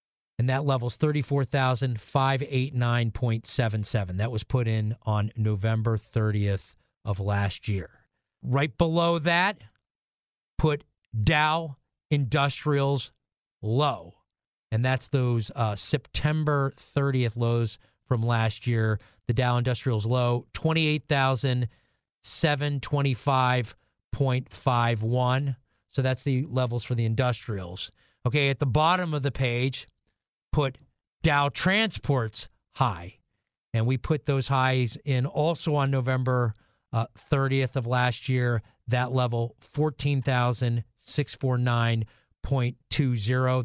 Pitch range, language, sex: 120-150 Hz, English, male